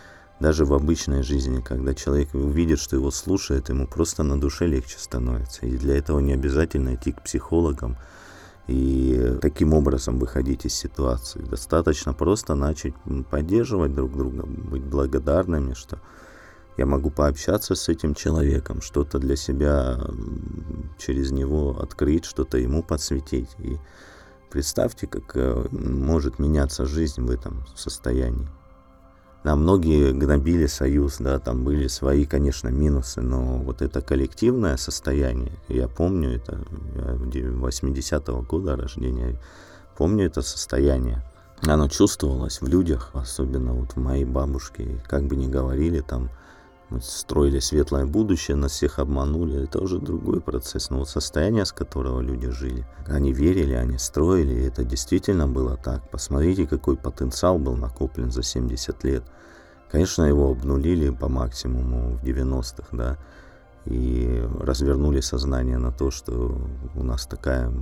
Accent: native